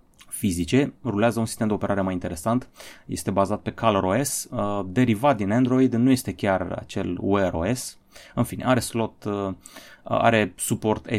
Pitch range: 100-130 Hz